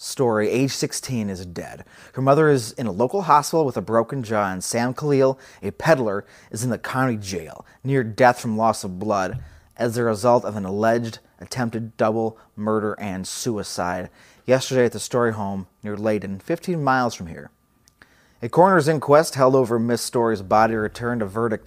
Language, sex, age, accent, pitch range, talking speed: English, male, 30-49, American, 105-140 Hz, 180 wpm